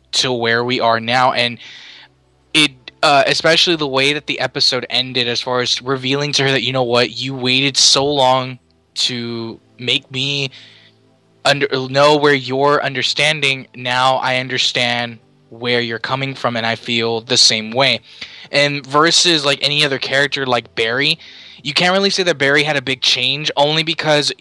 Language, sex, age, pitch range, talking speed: English, male, 20-39, 120-145 Hz, 170 wpm